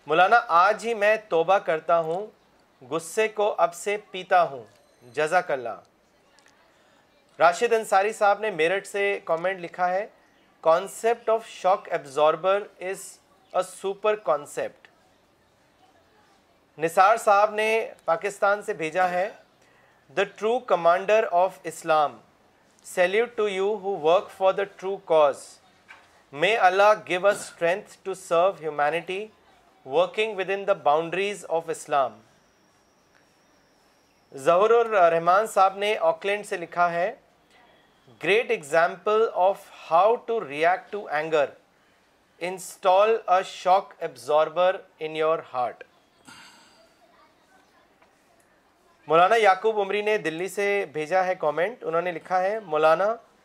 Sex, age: male, 40-59